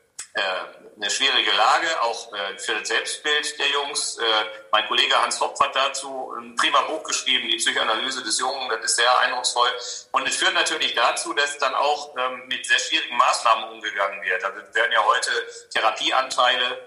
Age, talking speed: 40-59, 165 wpm